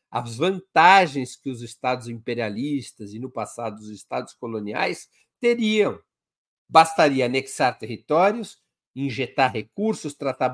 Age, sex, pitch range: 60-79, male, 120-170 Hz